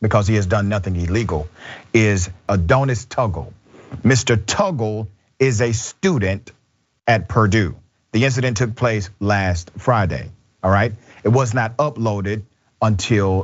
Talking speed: 130 wpm